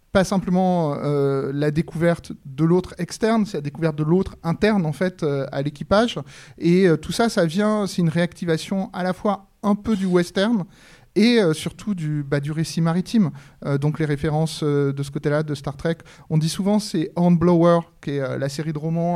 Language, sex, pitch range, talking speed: French, male, 150-195 Hz, 205 wpm